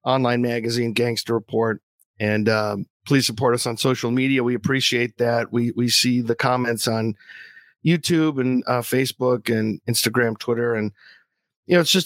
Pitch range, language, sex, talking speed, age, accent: 120-155 Hz, English, male, 165 wpm, 50-69, American